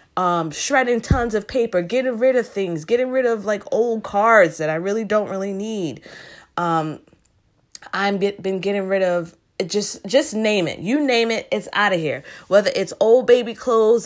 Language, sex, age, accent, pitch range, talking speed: English, female, 20-39, American, 175-215 Hz, 185 wpm